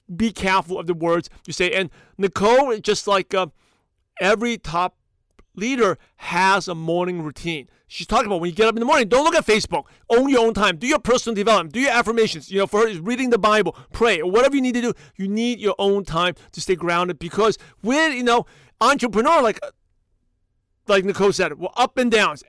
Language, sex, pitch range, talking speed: English, male, 175-230 Hz, 210 wpm